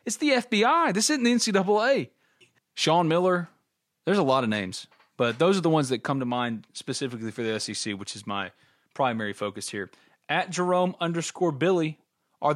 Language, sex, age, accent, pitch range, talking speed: English, male, 30-49, American, 115-160 Hz, 180 wpm